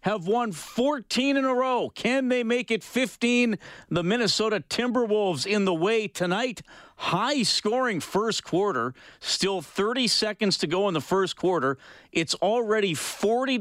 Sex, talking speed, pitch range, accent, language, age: male, 145 wpm, 145-200 Hz, American, English, 50-69